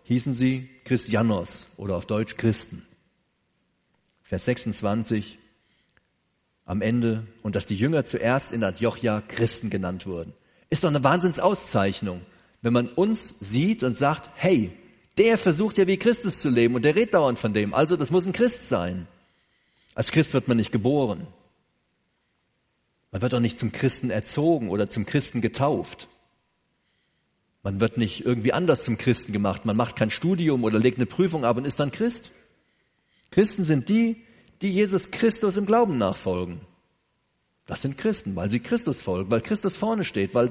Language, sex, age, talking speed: German, male, 40-59, 165 wpm